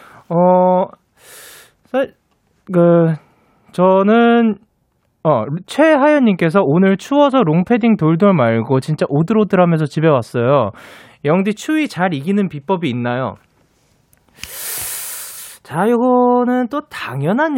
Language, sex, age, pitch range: Korean, male, 20-39, 120-200 Hz